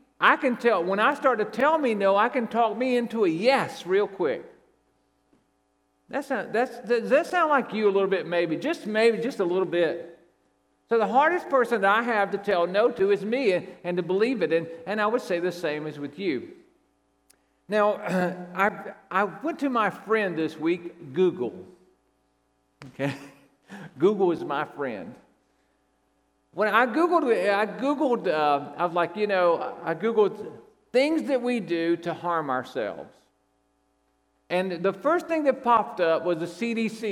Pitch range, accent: 170-255 Hz, American